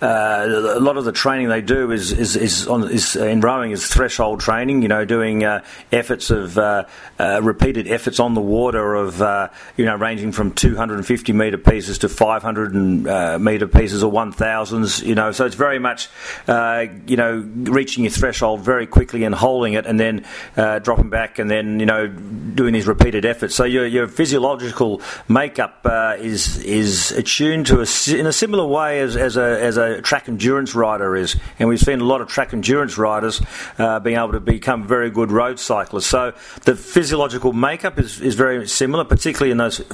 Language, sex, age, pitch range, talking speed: English, male, 40-59, 105-125 Hz, 205 wpm